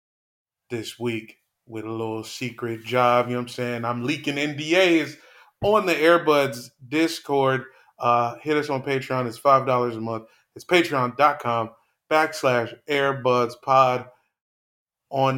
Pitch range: 120-145 Hz